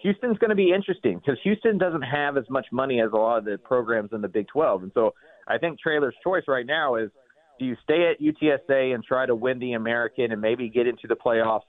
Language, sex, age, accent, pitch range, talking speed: English, male, 30-49, American, 110-140 Hz, 245 wpm